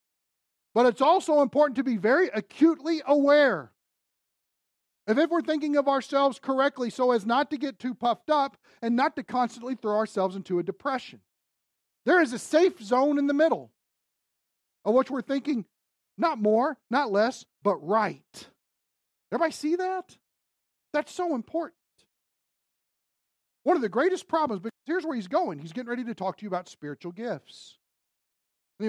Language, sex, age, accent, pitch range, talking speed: English, male, 40-59, American, 180-265 Hz, 160 wpm